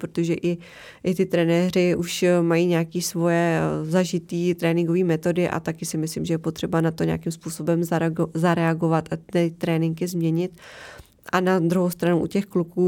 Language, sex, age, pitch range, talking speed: Czech, female, 20-39, 165-175 Hz, 165 wpm